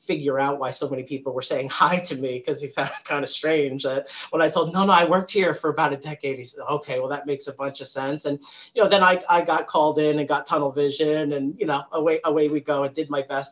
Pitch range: 135-160 Hz